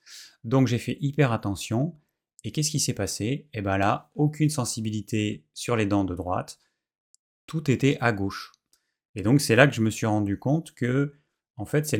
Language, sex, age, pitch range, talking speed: French, male, 30-49, 105-135 Hz, 190 wpm